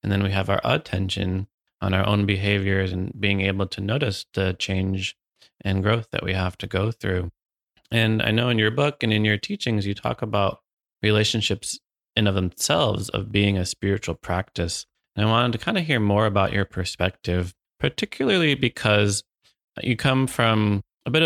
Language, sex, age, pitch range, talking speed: English, male, 30-49, 95-110 Hz, 185 wpm